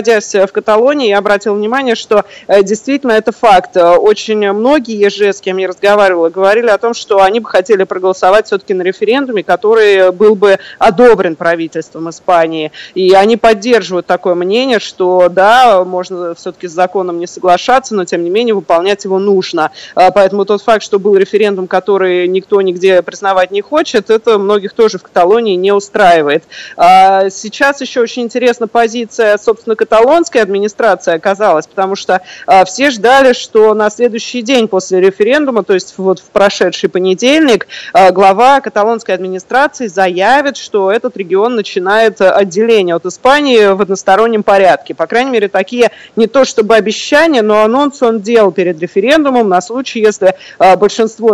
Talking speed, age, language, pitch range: 155 wpm, 20-39, Russian, 185-225 Hz